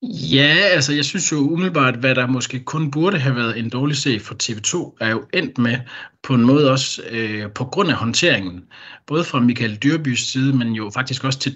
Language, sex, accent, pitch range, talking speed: Danish, male, native, 105-135 Hz, 215 wpm